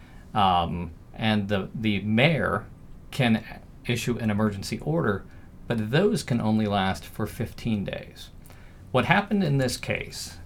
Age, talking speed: 40-59, 130 wpm